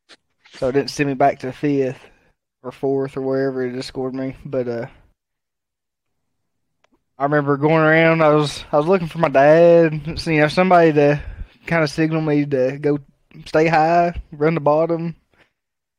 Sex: male